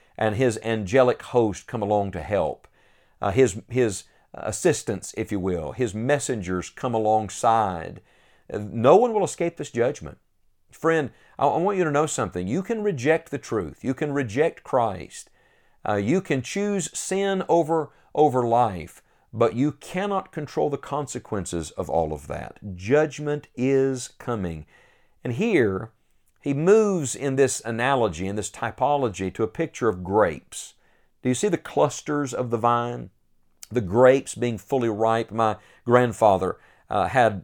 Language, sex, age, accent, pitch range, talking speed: English, male, 50-69, American, 100-140 Hz, 155 wpm